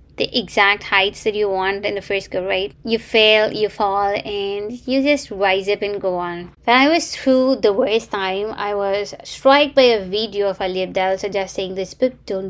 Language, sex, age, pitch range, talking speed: English, female, 20-39, 190-235 Hz, 205 wpm